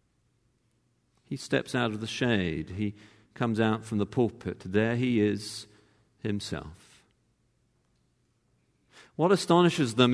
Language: English